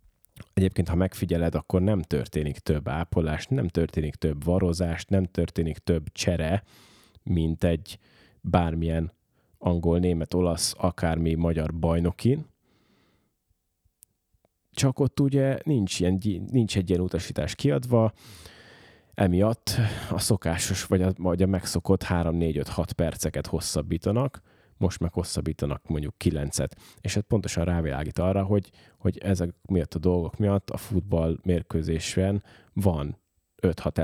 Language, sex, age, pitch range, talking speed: Hungarian, male, 30-49, 85-100 Hz, 120 wpm